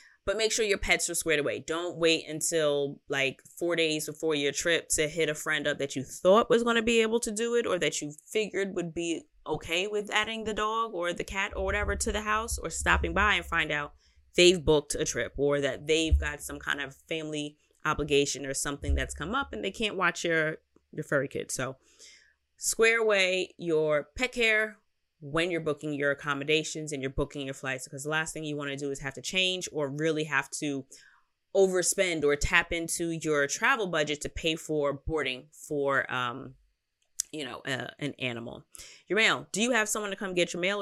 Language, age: English, 20-39